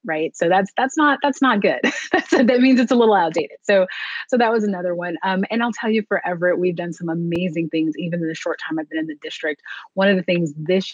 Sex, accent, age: female, American, 30-49